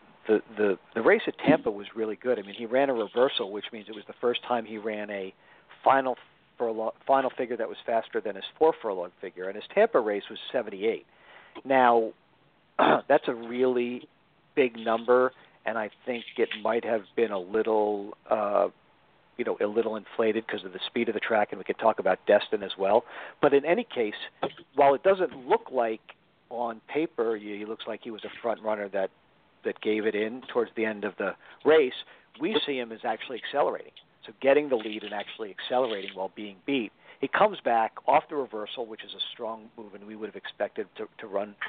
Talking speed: 210 wpm